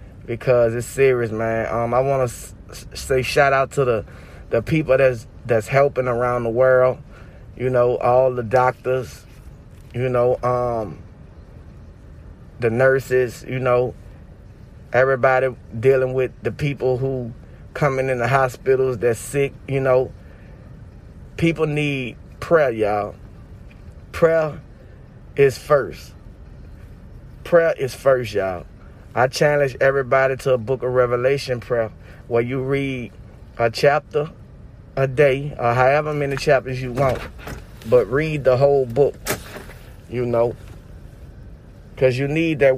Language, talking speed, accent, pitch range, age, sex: English, 130 wpm, American, 115-135 Hz, 30-49, male